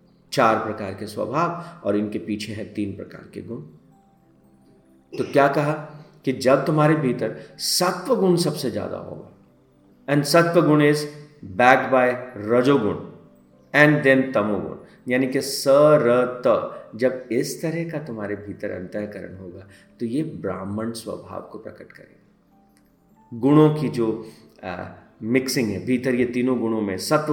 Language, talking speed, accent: Hindi, 140 wpm, native